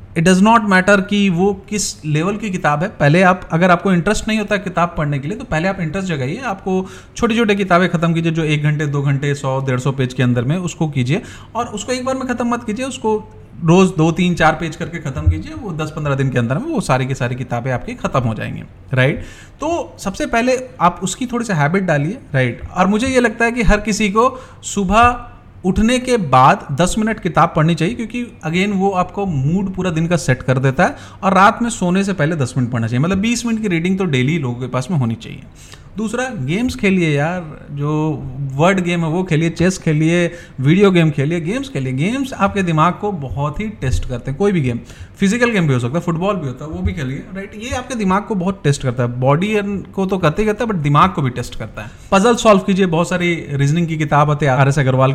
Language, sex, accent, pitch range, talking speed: Hindi, male, native, 140-205 Hz, 245 wpm